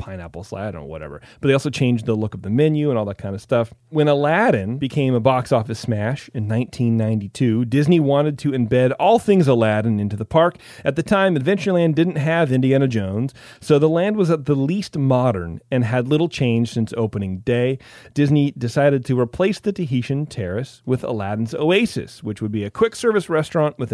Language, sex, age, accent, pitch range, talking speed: English, male, 30-49, American, 115-145 Hz, 200 wpm